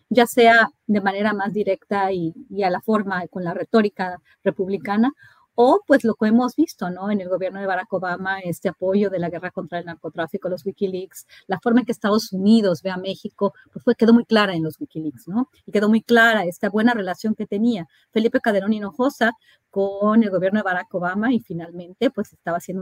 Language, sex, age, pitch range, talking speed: Spanish, female, 30-49, 180-215 Hz, 210 wpm